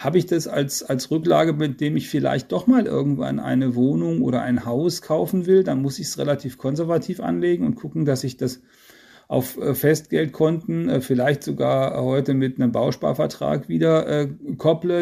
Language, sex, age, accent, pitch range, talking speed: German, male, 40-59, German, 130-165 Hz, 170 wpm